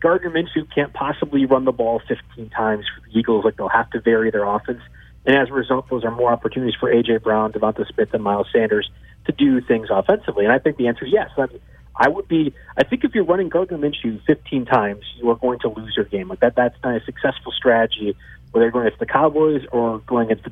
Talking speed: 245 wpm